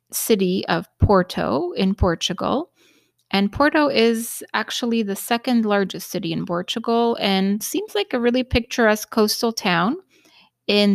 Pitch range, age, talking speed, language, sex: 195-235 Hz, 30-49, 130 wpm, English, female